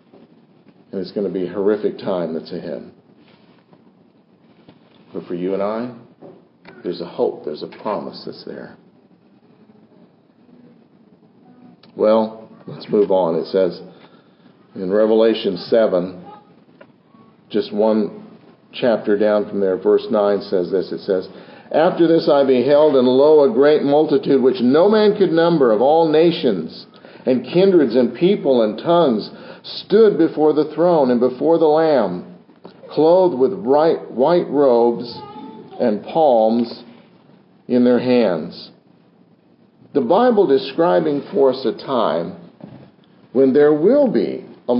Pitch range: 120-165 Hz